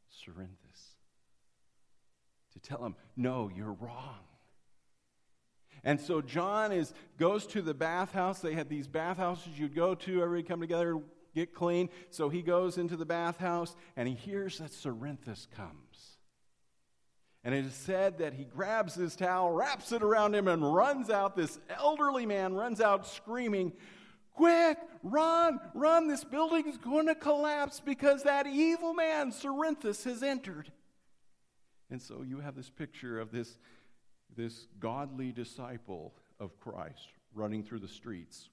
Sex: male